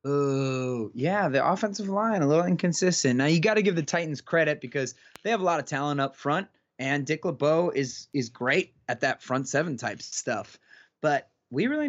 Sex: male